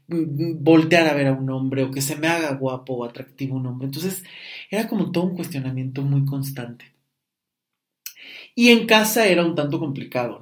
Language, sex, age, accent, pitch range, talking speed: Spanish, male, 30-49, Mexican, 130-150 Hz, 180 wpm